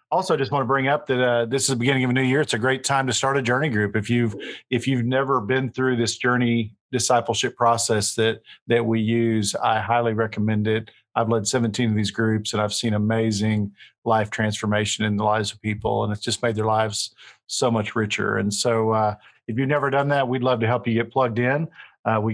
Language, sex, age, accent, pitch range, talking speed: English, male, 50-69, American, 110-130 Hz, 240 wpm